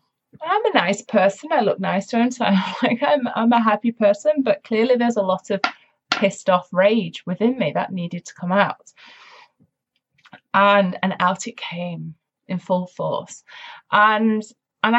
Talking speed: 175 wpm